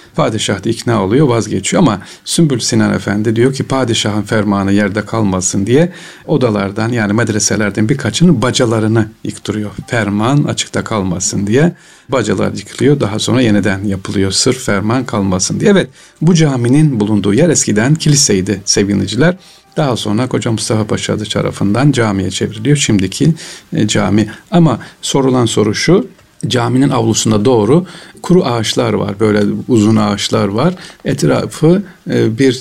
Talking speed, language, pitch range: 125 wpm, Turkish, 105-140 Hz